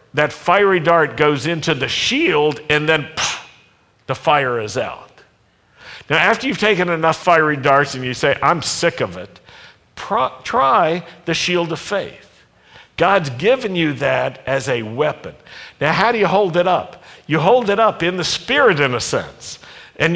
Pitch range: 140-200 Hz